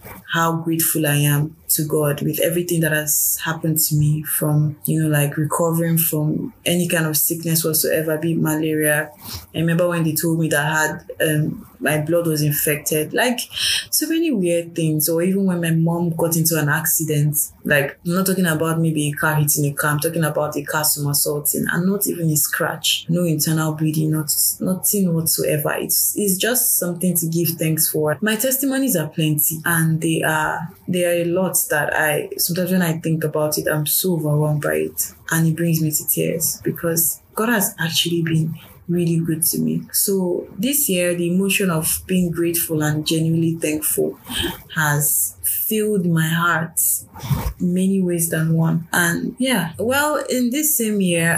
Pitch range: 150-180 Hz